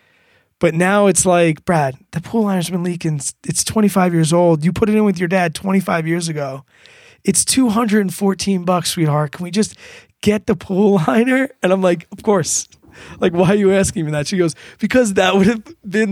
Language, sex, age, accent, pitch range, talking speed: English, male, 20-39, American, 160-200 Hz, 200 wpm